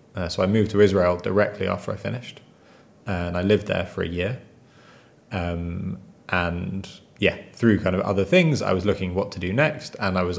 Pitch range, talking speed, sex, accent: 90-105 Hz, 200 wpm, male, British